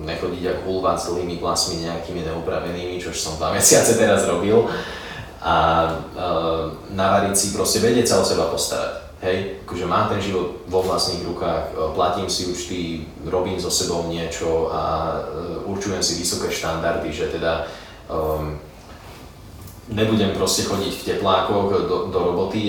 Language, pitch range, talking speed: Slovak, 80-95 Hz, 145 wpm